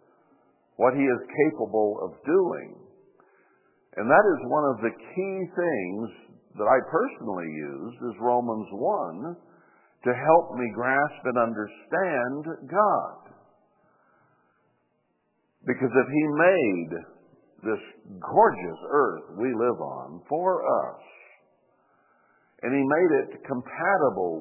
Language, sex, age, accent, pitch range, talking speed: English, male, 60-79, American, 115-180 Hz, 110 wpm